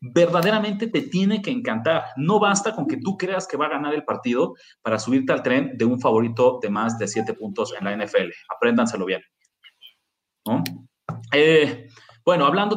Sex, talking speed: male, 180 wpm